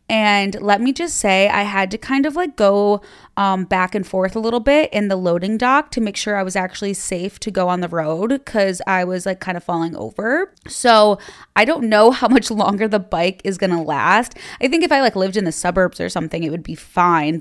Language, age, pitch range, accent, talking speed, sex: English, 20-39, 175-215 Hz, American, 245 wpm, female